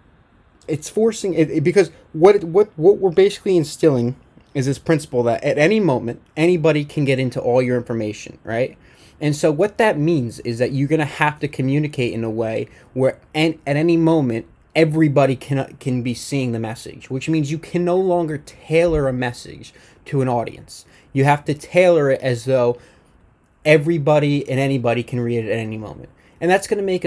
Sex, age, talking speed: male, 20-39, 195 wpm